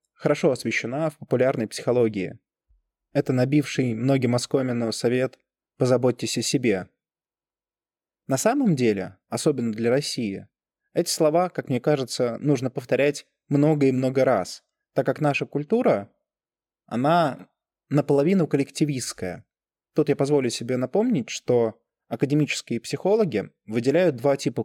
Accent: native